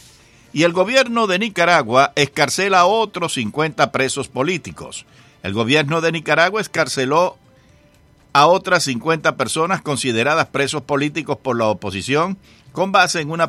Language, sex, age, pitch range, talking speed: English, male, 60-79, 125-170 Hz, 135 wpm